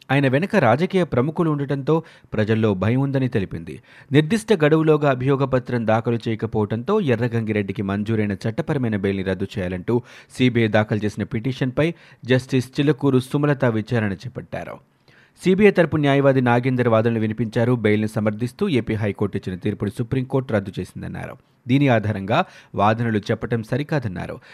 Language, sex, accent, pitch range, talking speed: Telugu, male, native, 110-140 Hz, 120 wpm